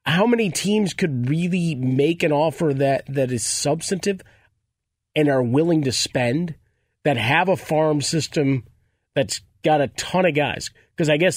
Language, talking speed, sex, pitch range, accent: English, 165 wpm, male, 125-160 Hz, American